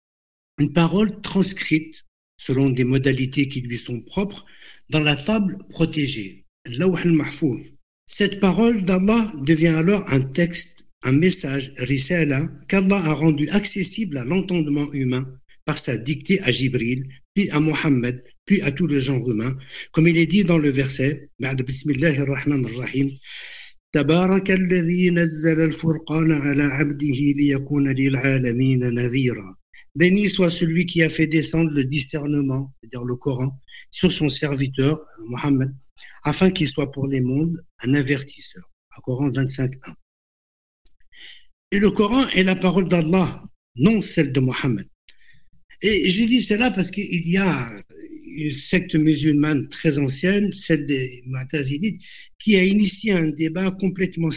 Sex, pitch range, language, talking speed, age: male, 135-185 Hz, French, 125 wpm, 60-79